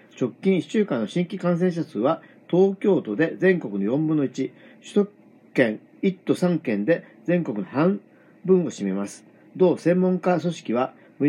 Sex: male